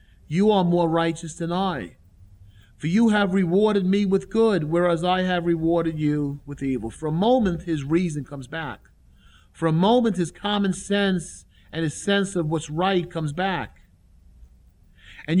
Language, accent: English, American